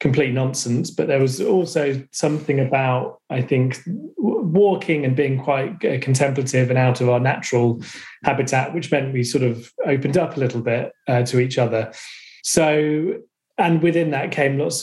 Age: 30-49